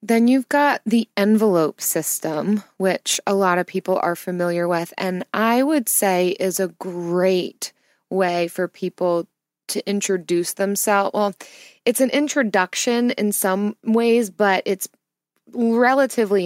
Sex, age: female, 20-39